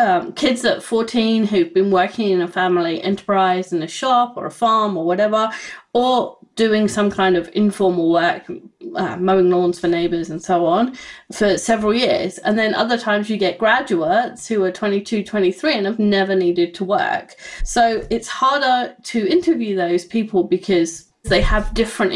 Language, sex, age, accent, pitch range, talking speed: English, female, 30-49, British, 180-225 Hz, 175 wpm